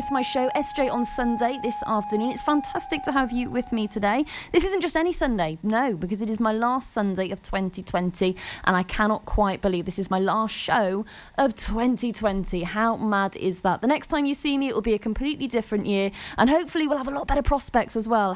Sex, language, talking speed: female, English, 220 wpm